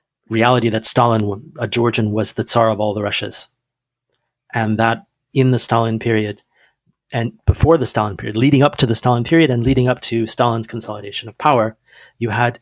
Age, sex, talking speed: 30-49, male, 185 wpm